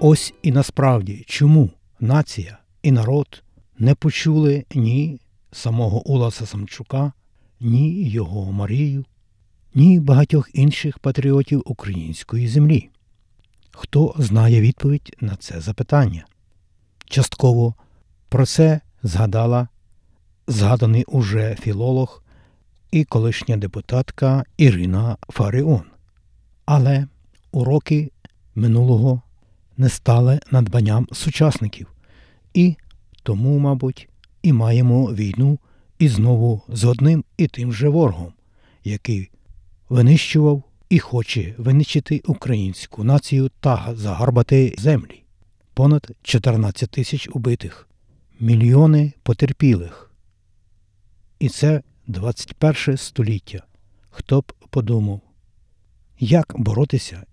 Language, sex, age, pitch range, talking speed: Ukrainian, male, 60-79, 100-140 Hz, 90 wpm